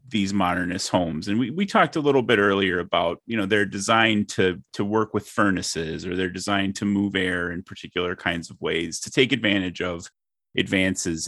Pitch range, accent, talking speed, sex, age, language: 90-115 Hz, American, 195 wpm, male, 30-49, English